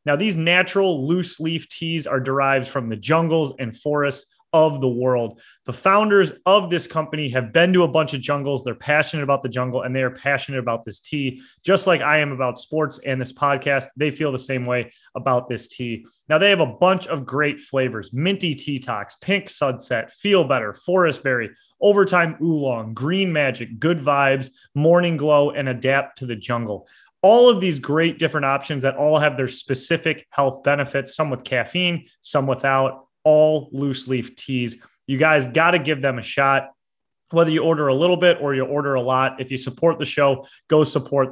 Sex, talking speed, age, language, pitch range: male, 195 wpm, 30-49, English, 130-160 Hz